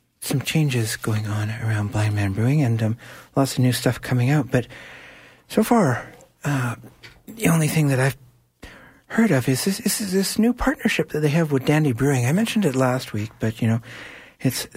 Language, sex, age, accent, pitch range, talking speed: English, male, 60-79, American, 110-145 Hz, 195 wpm